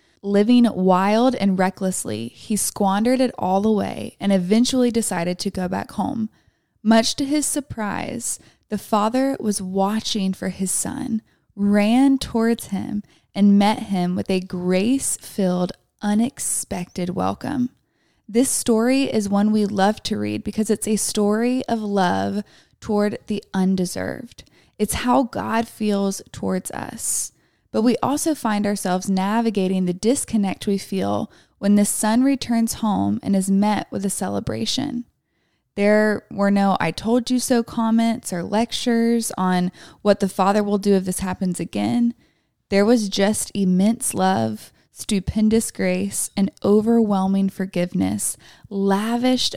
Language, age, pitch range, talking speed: English, 20-39, 190-230 Hz, 140 wpm